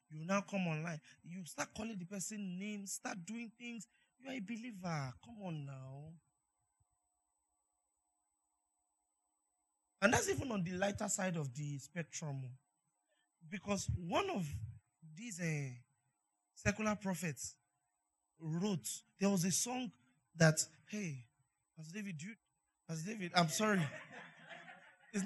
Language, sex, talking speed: English, male, 120 wpm